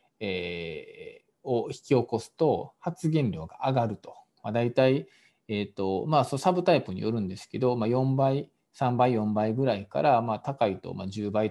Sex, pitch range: male, 105-160 Hz